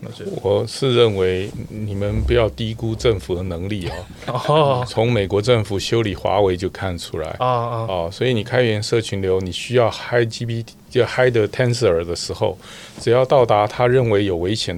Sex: male